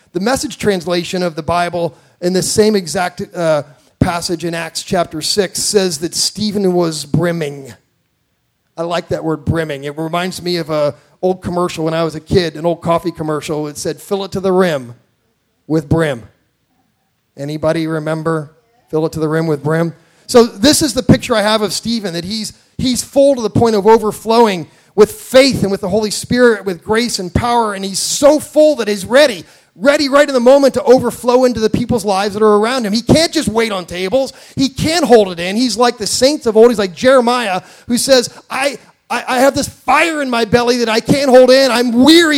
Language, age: English, 40-59